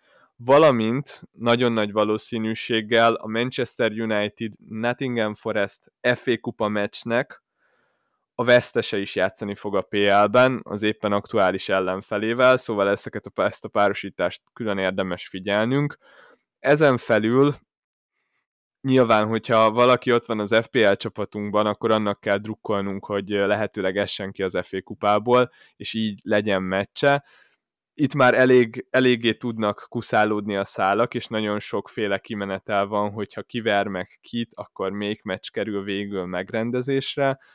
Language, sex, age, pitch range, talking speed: Hungarian, male, 20-39, 100-120 Hz, 125 wpm